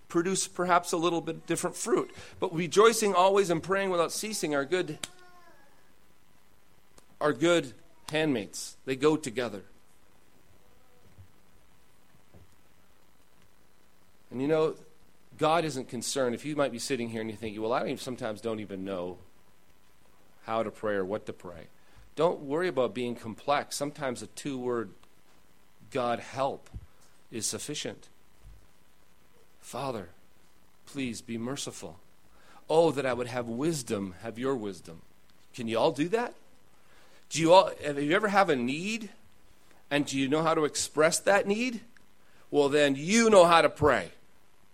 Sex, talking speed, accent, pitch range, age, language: male, 140 wpm, American, 115-175 Hz, 40-59, English